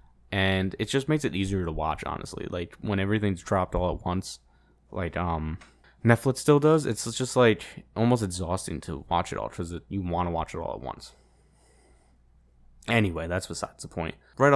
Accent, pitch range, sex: American, 80-110 Hz, male